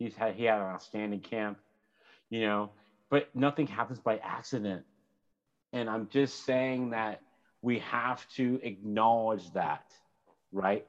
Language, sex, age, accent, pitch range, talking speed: English, male, 30-49, American, 105-130 Hz, 140 wpm